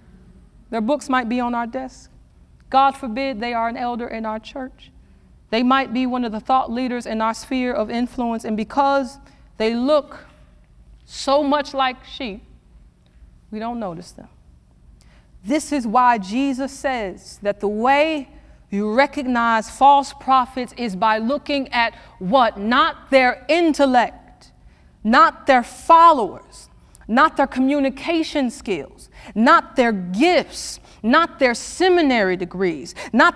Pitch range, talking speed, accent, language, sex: 215-285 Hz, 135 wpm, American, English, female